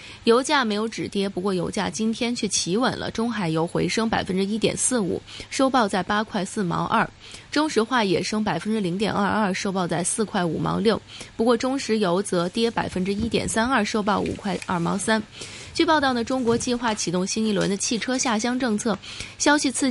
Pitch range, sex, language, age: 185-235 Hz, female, Chinese, 20-39